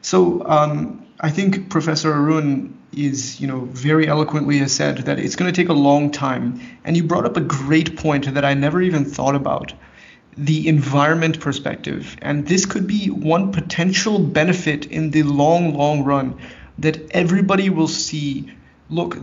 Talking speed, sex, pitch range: 170 wpm, male, 140-165 Hz